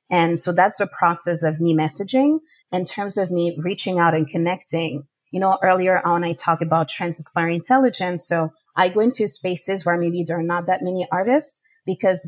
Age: 30-49